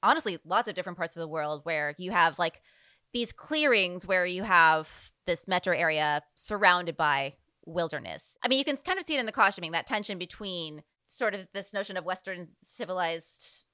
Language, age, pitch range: English, 20-39, 165-225 Hz